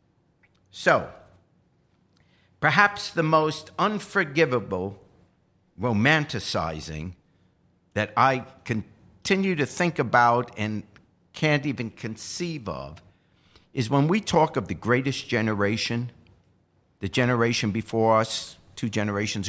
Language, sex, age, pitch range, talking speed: English, male, 60-79, 105-170 Hz, 95 wpm